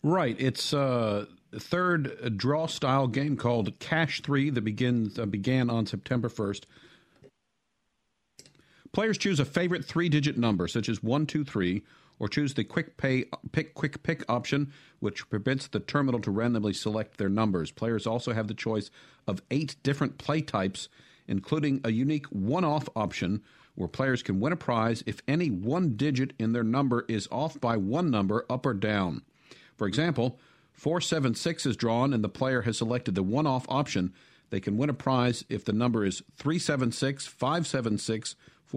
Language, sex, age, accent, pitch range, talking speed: English, male, 50-69, American, 110-140 Hz, 165 wpm